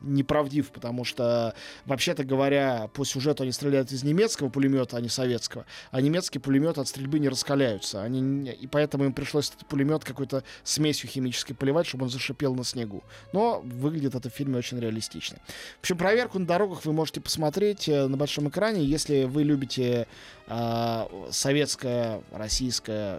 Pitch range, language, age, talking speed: 125-150 Hz, Russian, 20-39, 160 wpm